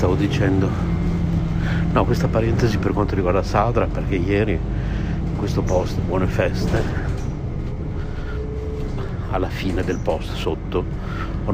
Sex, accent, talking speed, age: male, native, 115 wpm, 60-79